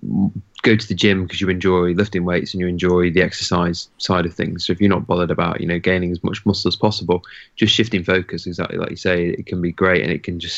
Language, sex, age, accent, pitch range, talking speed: English, male, 20-39, British, 90-100 Hz, 260 wpm